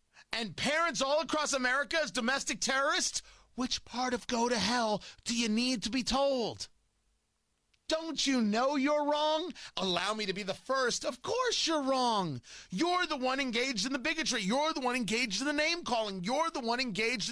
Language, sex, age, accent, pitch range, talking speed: English, male, 30-49, American, 215-290 Hz, 185 wpm